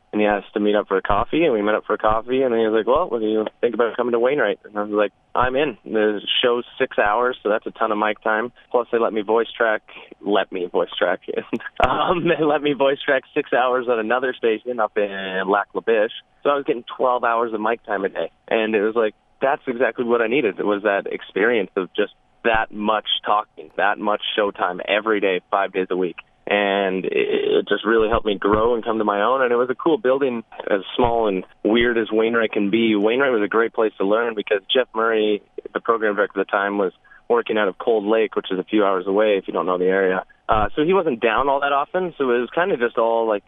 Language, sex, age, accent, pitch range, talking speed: English, male, 20-39, American, 100-120 Hz, 260 wpm